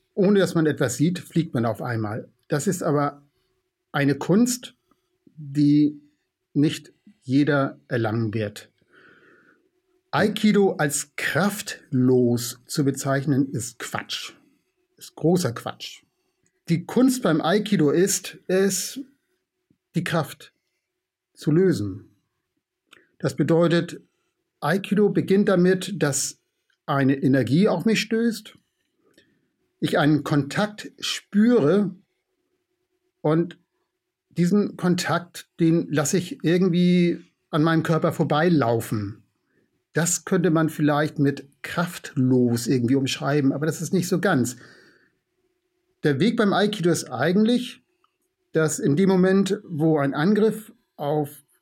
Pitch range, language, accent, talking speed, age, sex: 145-215 Hz, German, German, 110 wpm, 60-79, male